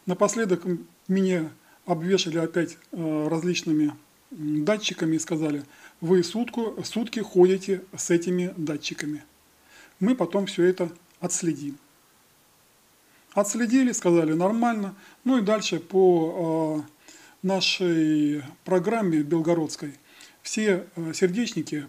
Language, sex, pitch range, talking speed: Russian, male, 155-190 Hz, 95 wpm